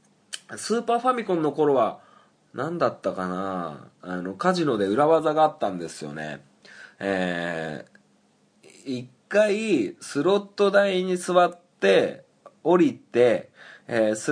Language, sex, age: Japanese, male, 20-39